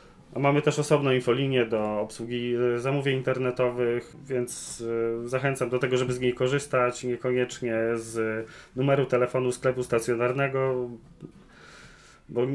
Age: 30-49